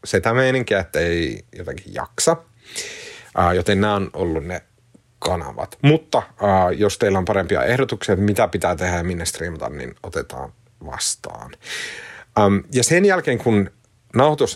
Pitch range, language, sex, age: 95-120 Hz, Finnish, male, 30-49